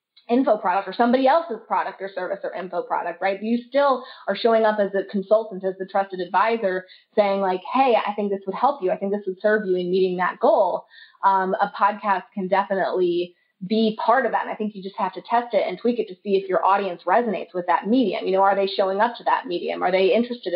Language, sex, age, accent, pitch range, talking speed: English, female, 20-39, American, 195-245 Hz, 250 wpm